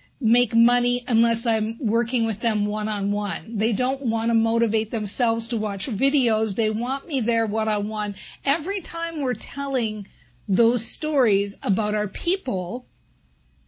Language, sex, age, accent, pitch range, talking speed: English, female, 50-69, American, 190-235 Hz, 145 wpm